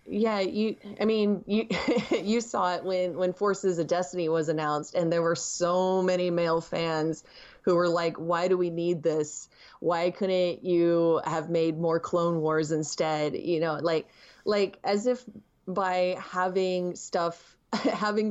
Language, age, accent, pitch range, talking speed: English, 20-39, American, 165-200 Hz, 160 wpm